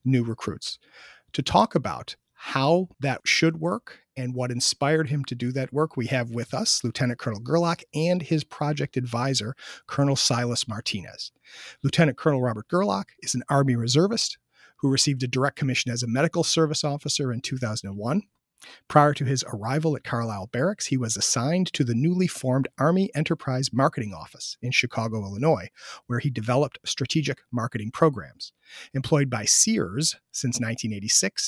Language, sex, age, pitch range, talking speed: English, male, 40-59, 120-150 Hz, 160 wpm